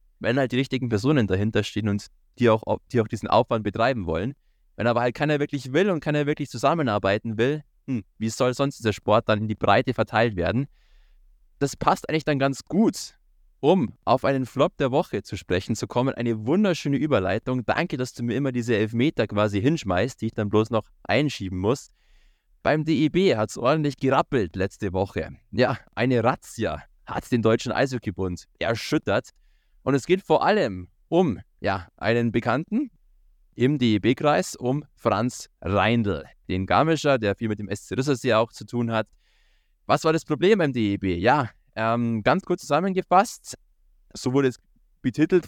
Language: German